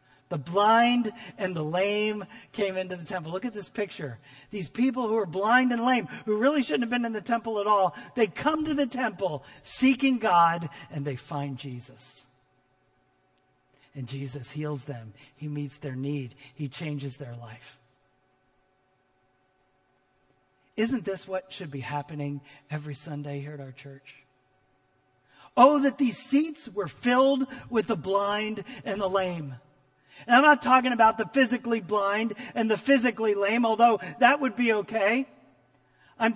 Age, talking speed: 40-59, 155 wpm